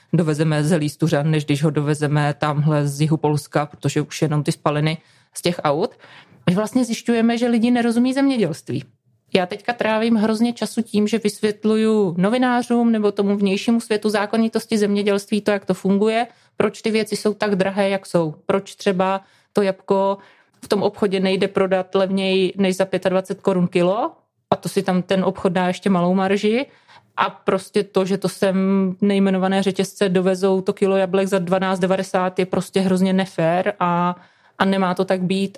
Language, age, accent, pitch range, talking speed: Czech, 30-49, native, 185-205 Hz, 175 wpm